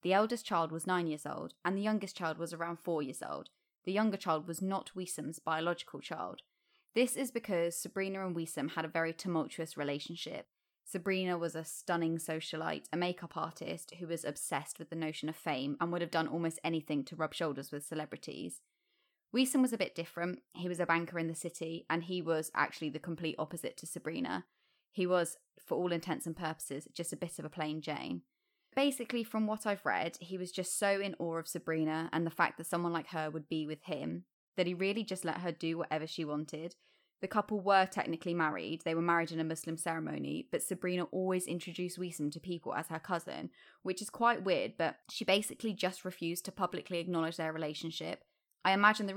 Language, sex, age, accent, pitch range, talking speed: English, female, 20-39, British, 160-190 Hz, 205 wpm